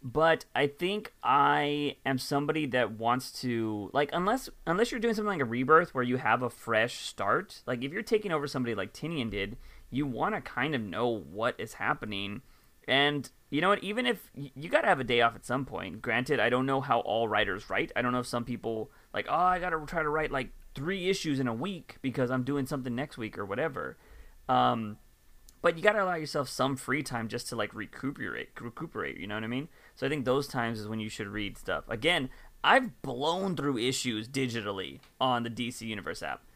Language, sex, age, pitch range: English, male, 30-49, 115-150 Hz